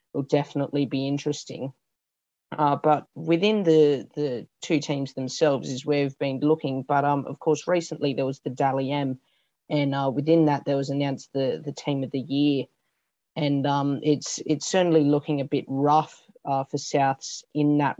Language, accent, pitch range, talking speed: English, Australian, 135-150 Hz, 180 wpm